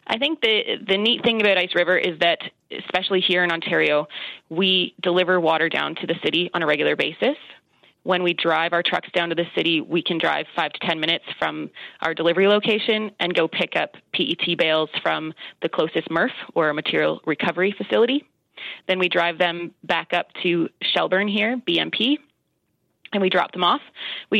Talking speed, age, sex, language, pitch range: 190 wpm, 20-39, female, English, 165-195 Hz